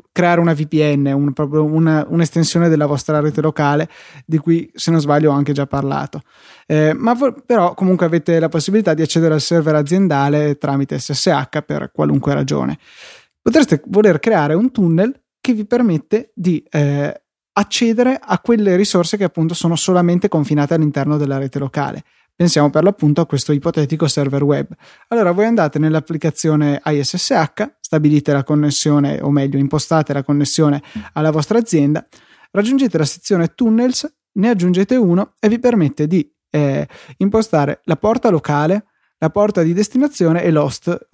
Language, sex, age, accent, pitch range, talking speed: Italian, male, 20-39, native, 145-190 Hz, 150 wpm